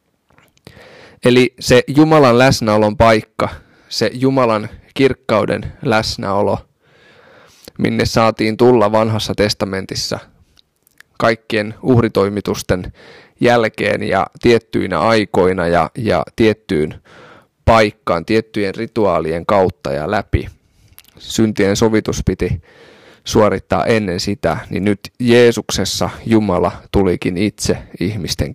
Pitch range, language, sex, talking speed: 100-120 Hz, Finnish, male, 90 wpm